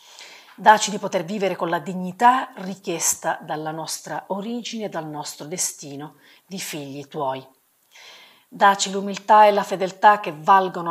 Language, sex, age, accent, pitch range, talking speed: Italian, female, 40-59, native, 160-205 Hz, 140 wpm